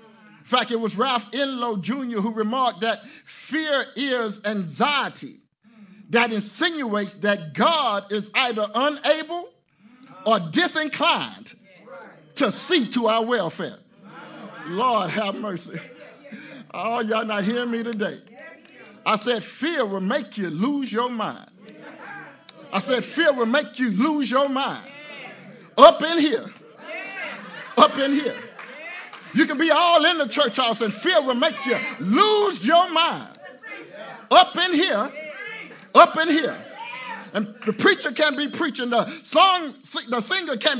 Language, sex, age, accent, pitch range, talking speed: English, male, 50-69, American, 230-315 Hz, 135 wpm